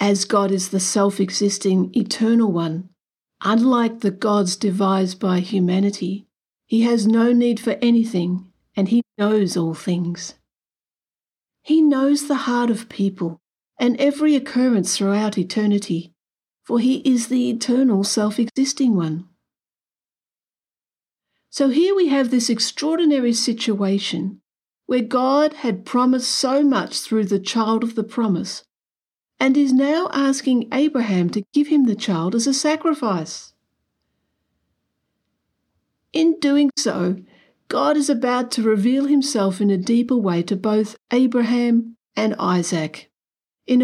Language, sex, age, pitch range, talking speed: English, female, 50-69, 195-250 Hz, 125 wpm